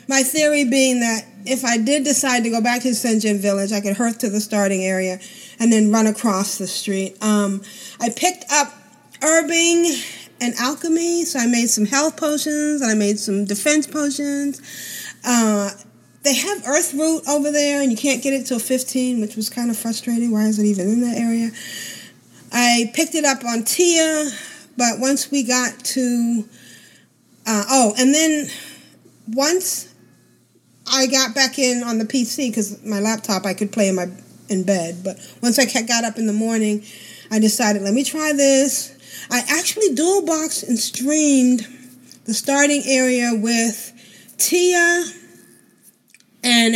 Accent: American